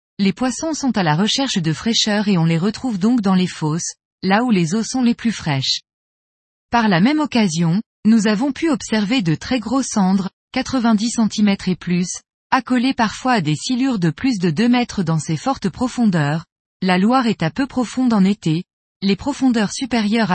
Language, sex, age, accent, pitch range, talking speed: French, female, 20-39, French, 185-245 Hz, 190 wpm